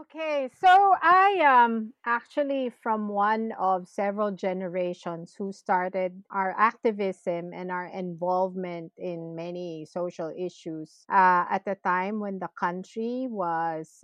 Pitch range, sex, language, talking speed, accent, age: 180-210 Hz, female, English, 125 wpm, Filipino, 40-59